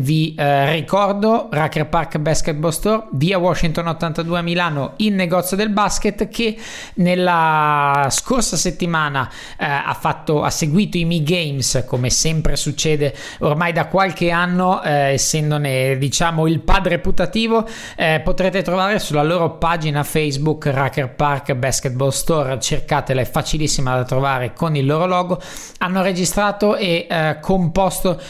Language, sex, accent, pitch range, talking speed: Italian, male, native, 140-180 Hz, 140 wpm